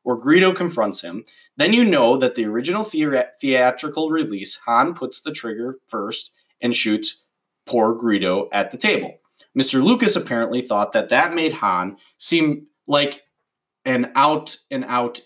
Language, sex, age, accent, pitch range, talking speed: English, male, 20-39, American, 105-150 Hz, 150 wpm